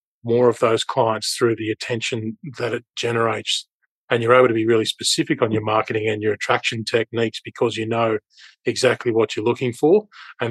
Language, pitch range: English, 110-120 Hz